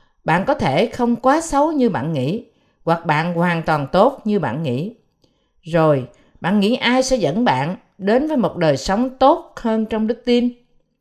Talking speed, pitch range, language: 185 wpm, 160-240 Hz, Vietnamese